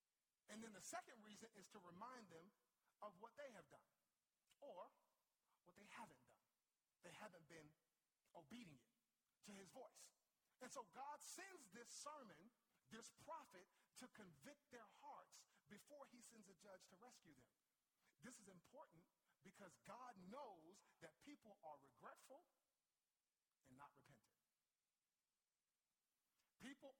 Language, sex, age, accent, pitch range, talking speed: English, male, 40-59, American, 155-230 Hz, 135 wpm